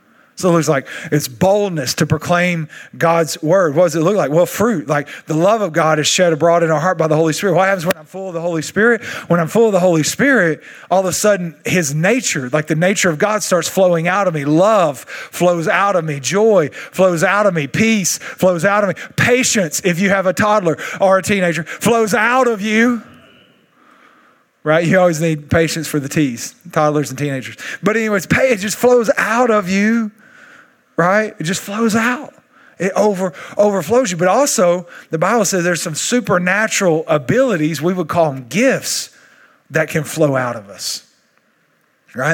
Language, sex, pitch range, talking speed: English, male, 150-200 Hz, 200 wpm